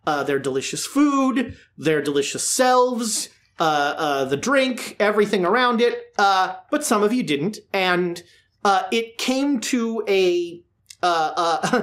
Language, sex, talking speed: English, male, 140 wpm